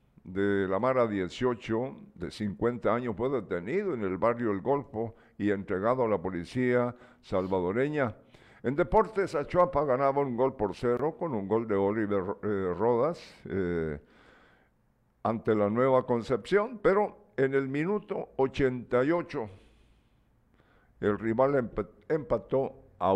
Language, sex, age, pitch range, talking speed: Spanish, male, 60-79, 100-135 Hz, 125 wpm